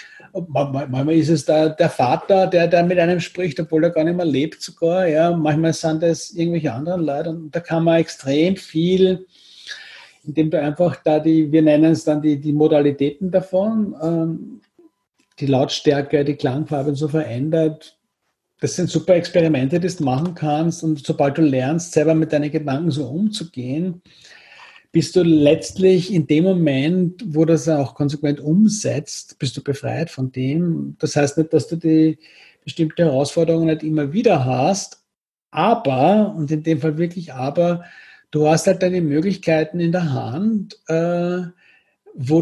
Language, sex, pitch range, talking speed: German, male, 150-180 Hz, 160 wpm